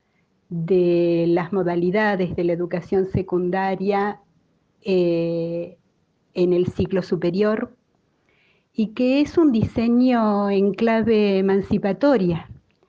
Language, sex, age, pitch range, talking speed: Spanish, female, 40-59, 185-215 Hz, 95 wpm